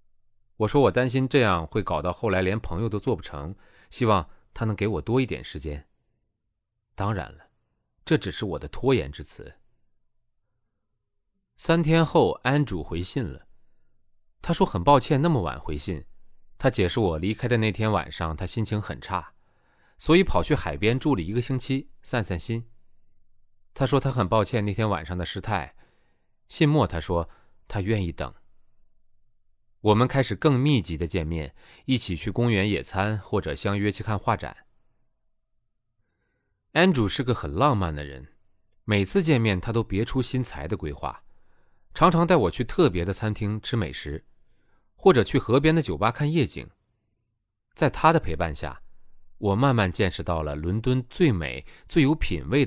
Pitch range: 95-125 Hz